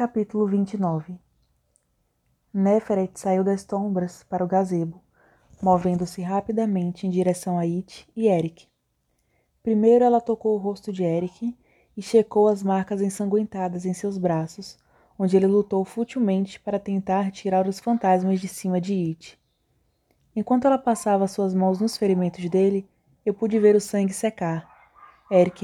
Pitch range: 180-205 Hz